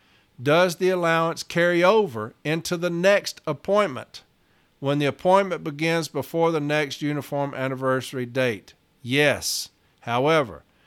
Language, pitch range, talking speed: English, 130-160 Hz, 115 wpm